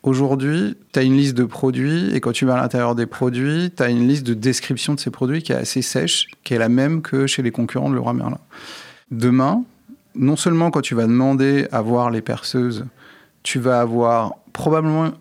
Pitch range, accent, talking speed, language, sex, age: 120-140 Hz, French, 215 wpm, French, male, 30-49